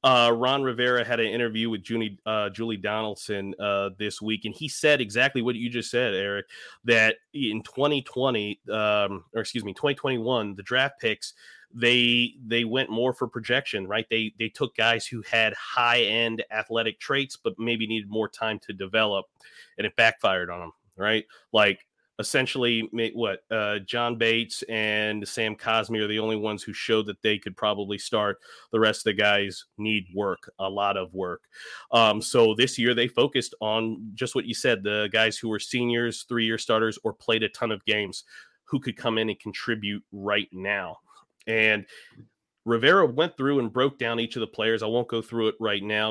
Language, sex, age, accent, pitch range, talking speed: English, male, 30-49, American, 105-120 Hz, 190 wpm